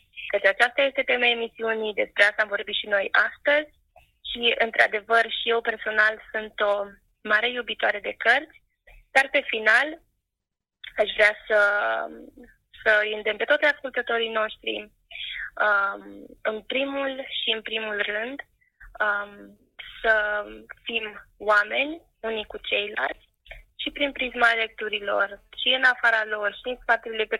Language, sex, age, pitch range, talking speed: Romanian, female, 20-39, 205-235 Hz, 135 wpm